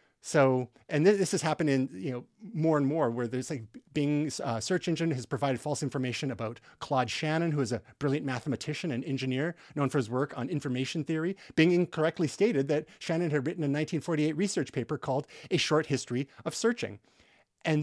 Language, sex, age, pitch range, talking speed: English, male, 30-49, 125-160 Hz, 190 wpm